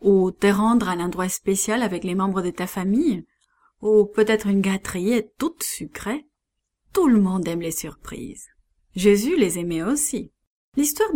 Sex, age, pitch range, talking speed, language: female, 30-49, 180-235 Hz, 165 wpm, English